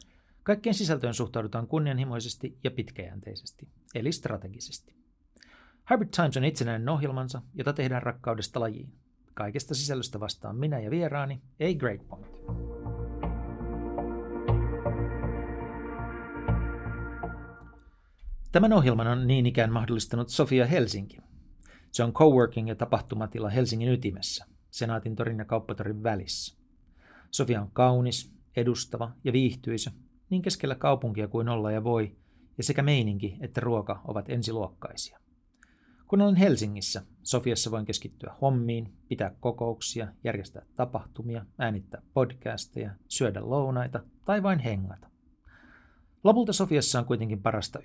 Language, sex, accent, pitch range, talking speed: Finnish, male, native, 105-130 Hz, 110 wpm